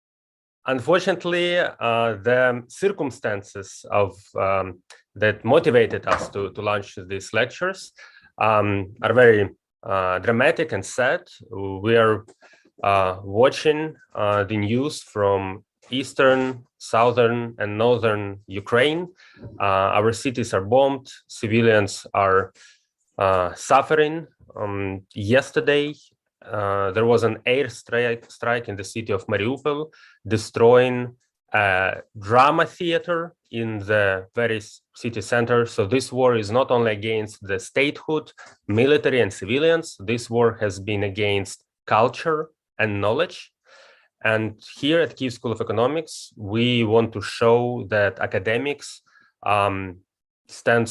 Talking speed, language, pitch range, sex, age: 120 wpm, English, 100-130 Hz, male, 20-39